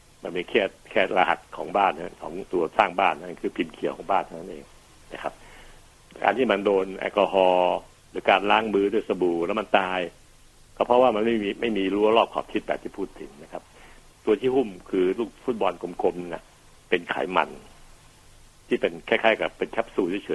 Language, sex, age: Thai, male, 60-79